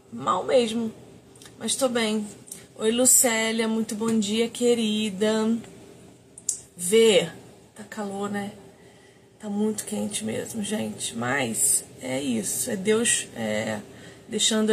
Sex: female